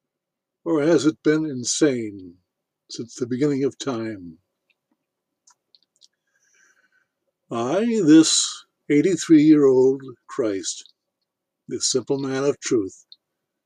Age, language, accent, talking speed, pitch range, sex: 60-79, English, American, 90 wpm, 135-215 Hz, male